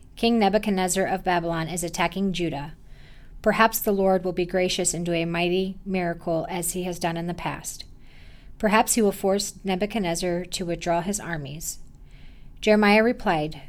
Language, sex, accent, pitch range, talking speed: English, female, American, 170-200 Hz, 160 wpm